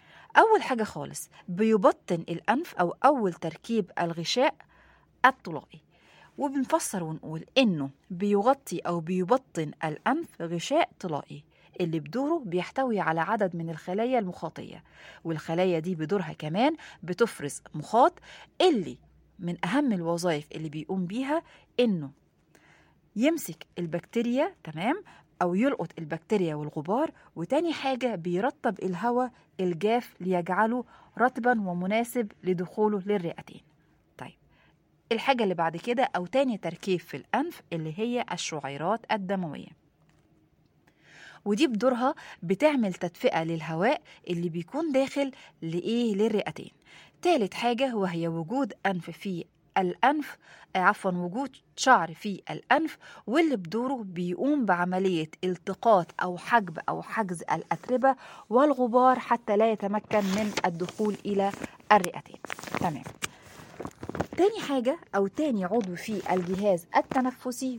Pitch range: 175-255 Hz